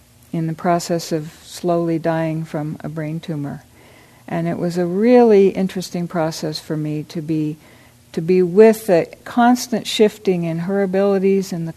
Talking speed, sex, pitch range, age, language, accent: 165 wpm, female, 160-190 Hz, 60-79, English, American